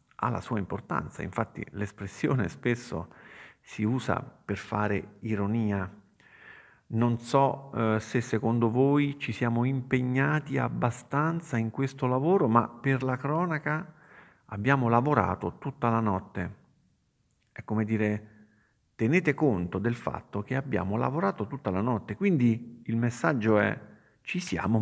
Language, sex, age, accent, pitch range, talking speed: Italian, male, 50-69, native, 100-125 Hz, 130 wpm